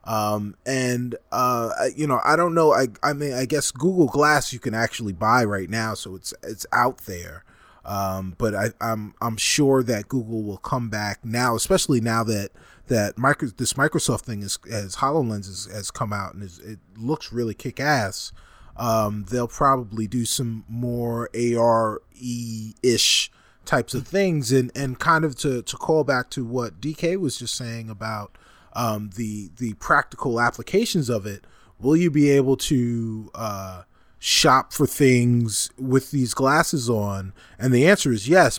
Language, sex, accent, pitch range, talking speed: English, male, American, 110-145 Hz, 175 wpm